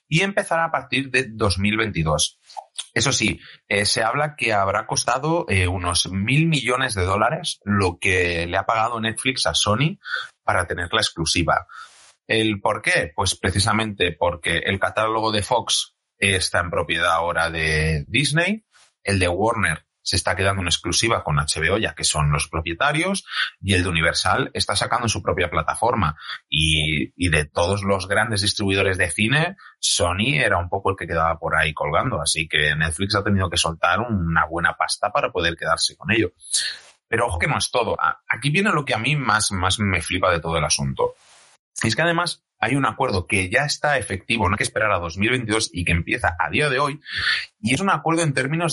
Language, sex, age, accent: Spanish, male, 30-49, Spanish